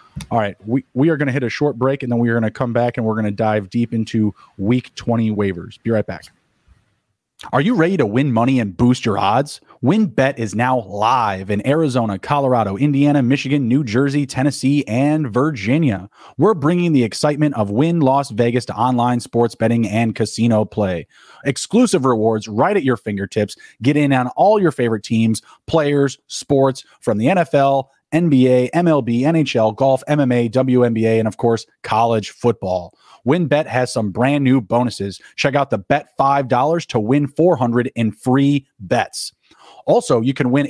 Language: English